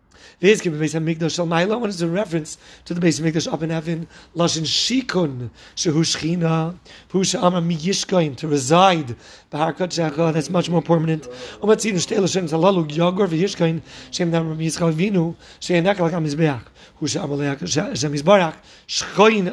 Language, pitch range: English, 160-200 Hz